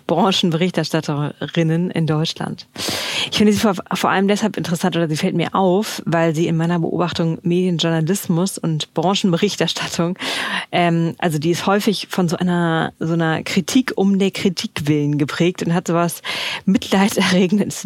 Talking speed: 145 wpm